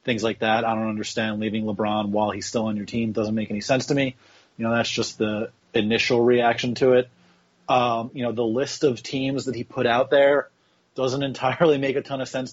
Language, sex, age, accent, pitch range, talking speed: English, male, 30-49, American, 115-135 Hz, 235 wpm